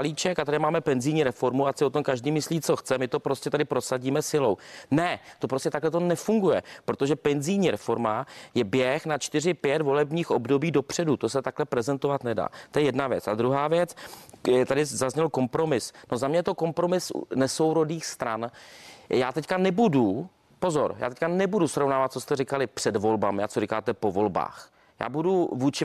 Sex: male